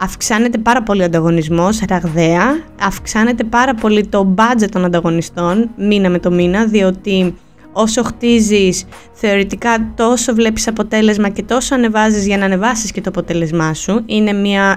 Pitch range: 190-245 Hz